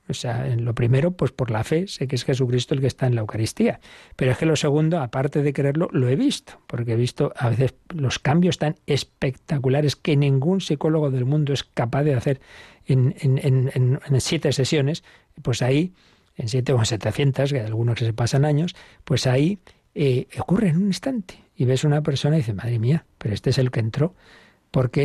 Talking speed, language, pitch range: 215 wpm, Spanish, 130-155 Hz